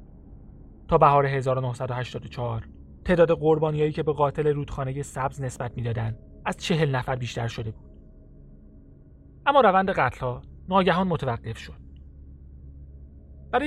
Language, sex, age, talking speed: Persian, male, 30-49, 120 wpm